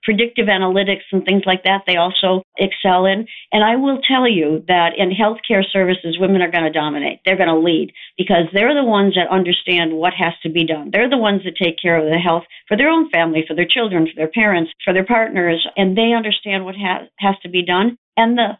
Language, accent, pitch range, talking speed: English, American, 175-215 Hz, 230 wpm